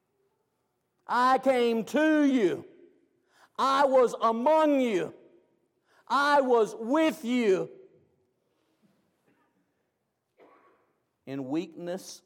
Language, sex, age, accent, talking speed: English, male, 50-69, American, 70 wpm